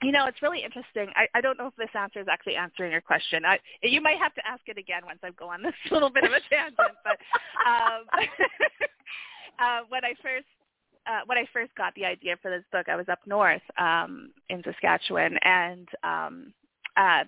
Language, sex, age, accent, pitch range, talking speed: English, female, 30-49, American, 190-240 Hz, 210 wpm